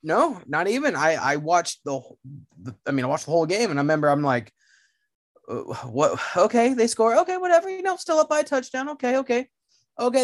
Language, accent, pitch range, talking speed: English, American, 120-185 Hz, 210 wpm